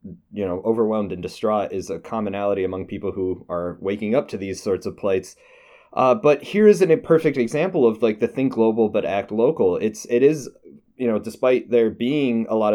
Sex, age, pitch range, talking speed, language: male, 20-39, 105-130 Hz, 205 wpm, English